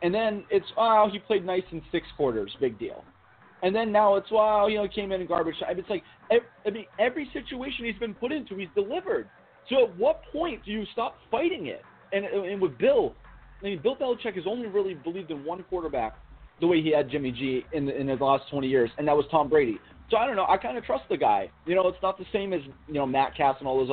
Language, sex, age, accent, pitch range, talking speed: English, male, 30-49, American, 140-200 Hz, 255 wpm